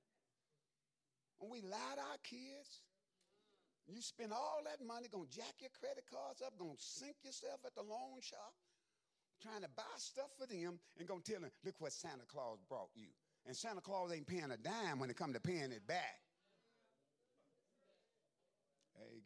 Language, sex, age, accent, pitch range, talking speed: English, male, 40-59, American, 160-235 Hz, 180 wpm